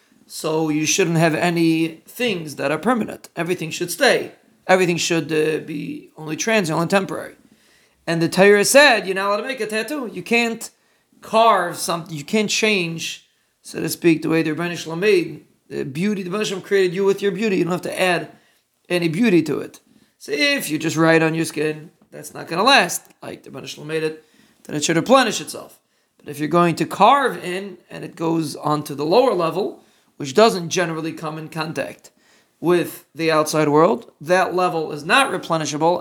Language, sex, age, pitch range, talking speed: English, male, 40-59, 155-195 Hz, 195 wpm